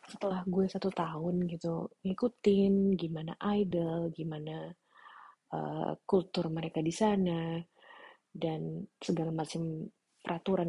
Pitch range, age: 160-200 Hz, 30-49